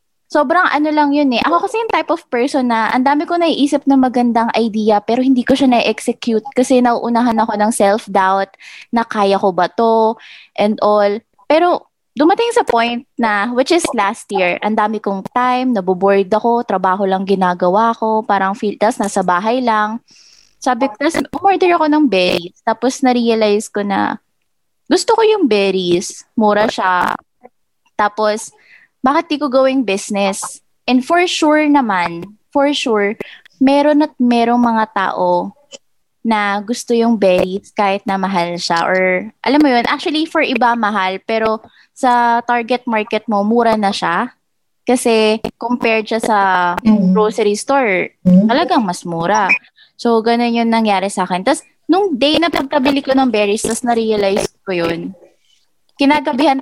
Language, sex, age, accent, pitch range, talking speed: English, female, 20-39, Filipino, 200-270 Hz, 155 wpm